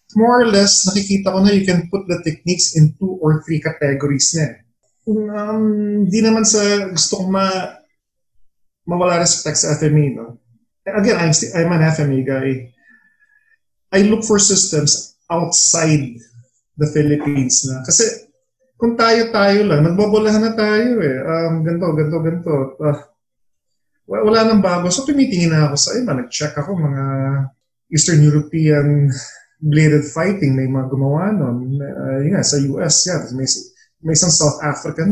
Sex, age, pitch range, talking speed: male, 20-39, 145-205 Hz, 150 wpm